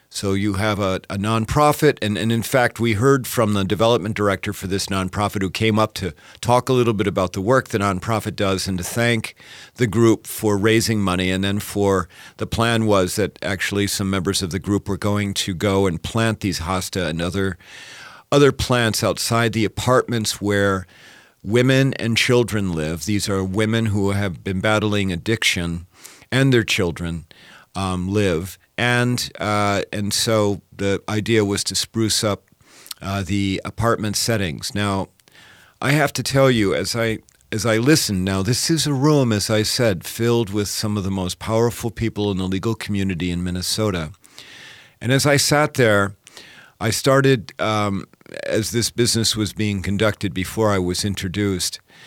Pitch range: 95-115 Hz